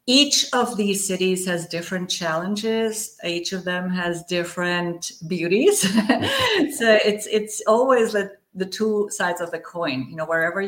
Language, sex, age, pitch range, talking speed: English, female, 50-69, 165-220 Hz, 150 wpm